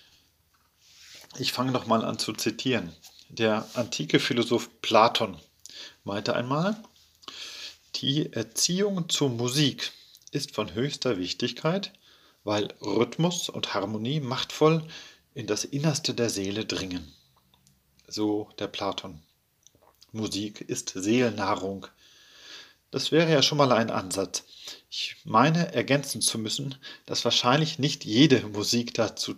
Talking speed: 110 wpm